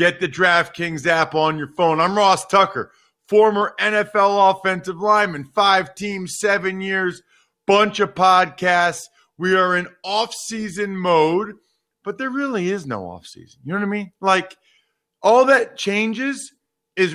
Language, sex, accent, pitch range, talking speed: English, male, American, 165-210 Hz, 145 wpm